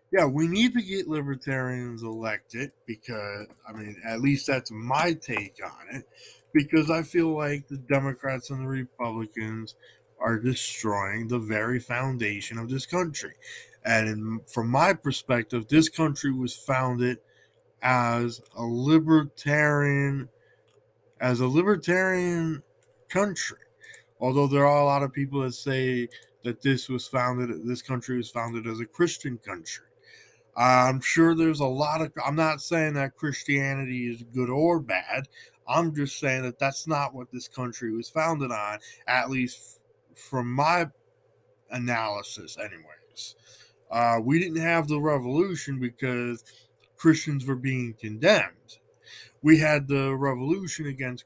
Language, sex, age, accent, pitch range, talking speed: English, male, 20-39, American, 125-155 Hz, 140 wpm